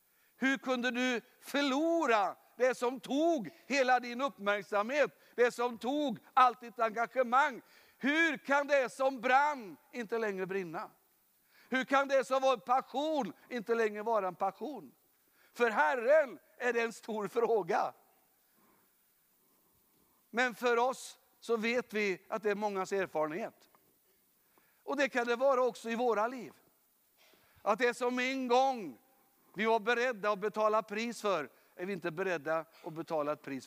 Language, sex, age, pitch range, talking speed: Swedish, male, 60-79, 195-255 Hz, 145 wpm